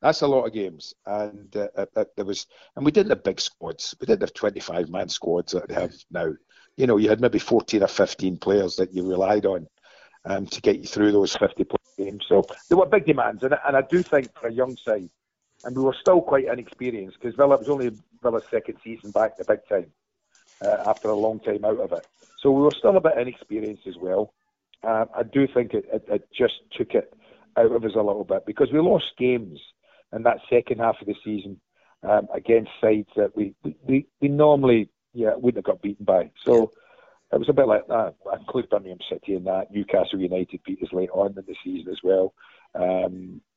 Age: 50-69